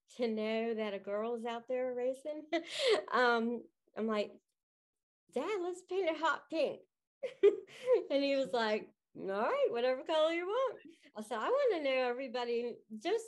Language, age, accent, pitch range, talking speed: English, 40-59, American, 180-240 Hz, 165 wpm